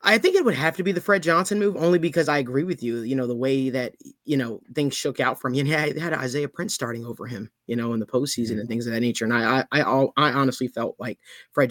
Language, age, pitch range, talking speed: English, 20-39, 125-155 Hz, 280 wpm